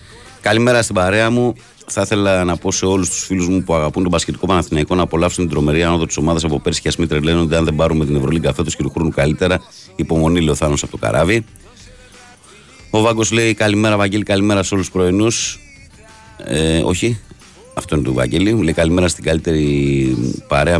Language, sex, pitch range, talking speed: Greek, male, 75-95 Hz, 190 wpm